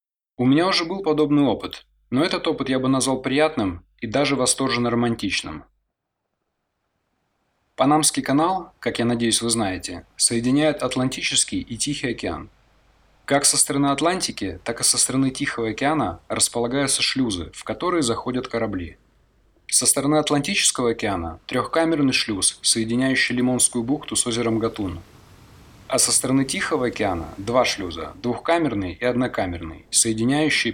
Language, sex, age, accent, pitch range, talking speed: Russian, male, 20-39, native, 115-140 Hz, 135 wpm